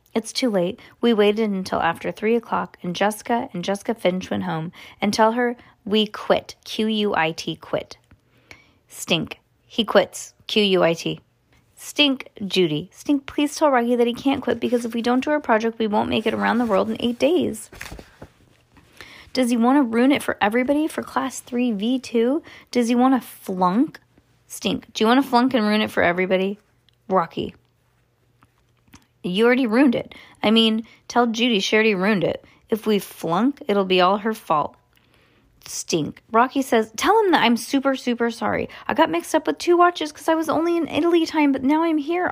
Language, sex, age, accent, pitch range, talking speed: English, female, 20-39, American, 195-265 Hz, 185 wpm